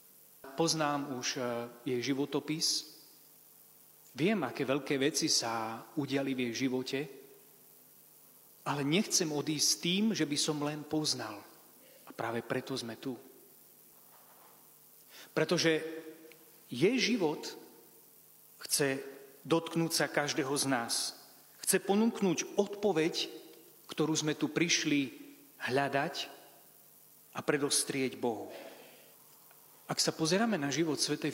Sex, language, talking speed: male, Slovak, 100 wpm